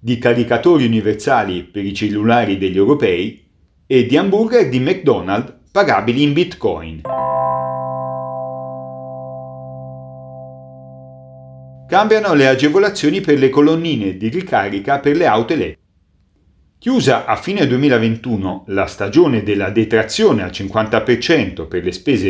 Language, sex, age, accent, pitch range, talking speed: Italian, male, 40-59, native, 100-150 Hz, 115 wpm